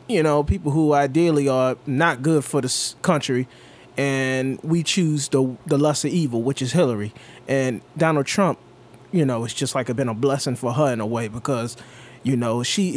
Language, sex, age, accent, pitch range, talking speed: English, male, 20-39, American, 120-150 Hz, 195 wpm